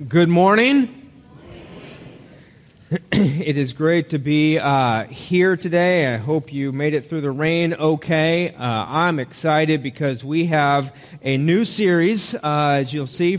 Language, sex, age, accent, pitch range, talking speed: German, male, 30-49, American, 155-205 Hz, 145 wpm